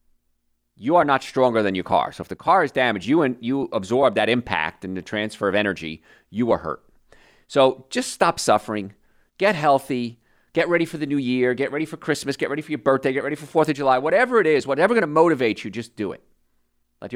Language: English